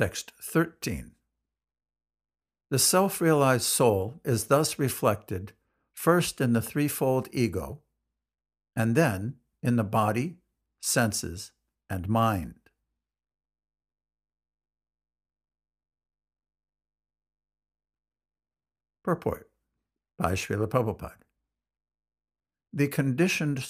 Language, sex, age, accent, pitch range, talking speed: English, male, 60-79, American, 90-135 Hz, 70 wpm